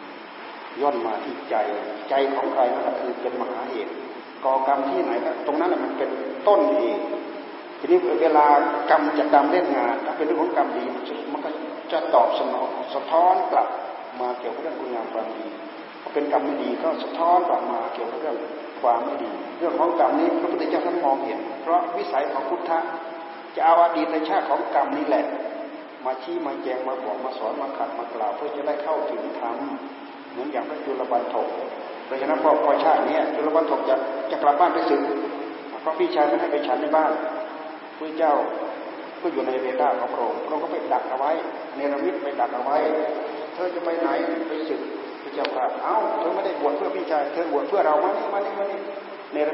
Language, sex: Thai, male